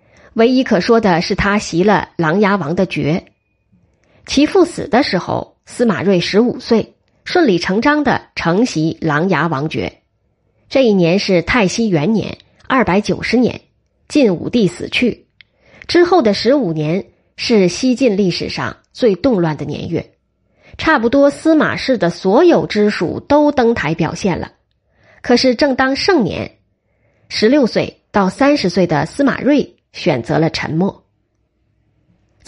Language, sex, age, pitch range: Chinese, female, 20-39, 160-240 Hz